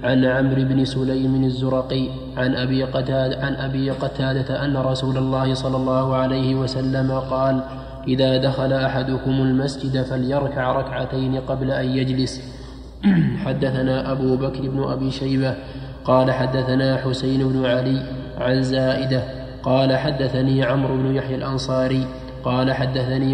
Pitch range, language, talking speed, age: 130-135 Hz, Arabic, 125 wpm, 20-39